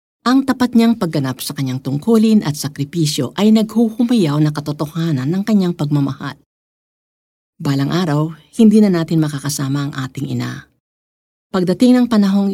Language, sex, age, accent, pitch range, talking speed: Filipino, female, 50-69, native, 140-195 Hz, 135 wpm